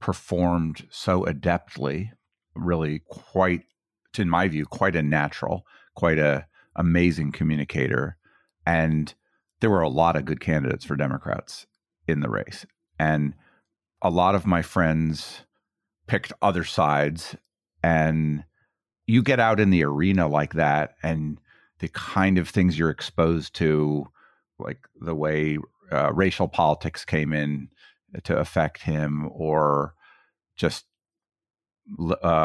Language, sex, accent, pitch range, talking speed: English, male, American, 75-90 Hz, 125 wpm